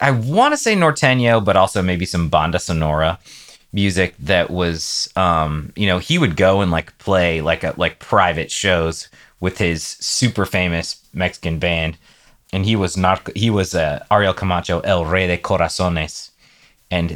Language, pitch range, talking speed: English, 85-105 Hz, 170 wpm